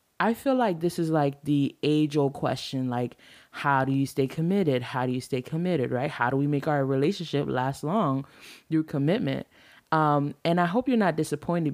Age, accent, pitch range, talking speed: 20-39, American, 135-175 Hz, 195 wpm